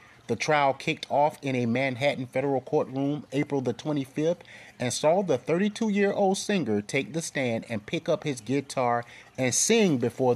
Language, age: English, 30-49